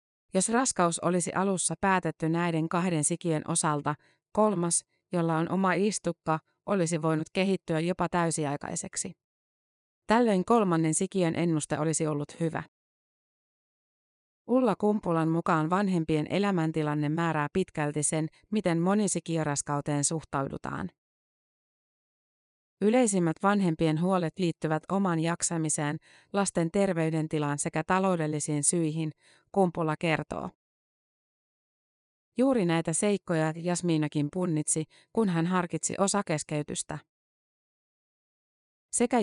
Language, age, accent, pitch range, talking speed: Finnish, 30-49, native, 155-190 Hz, 90 wpm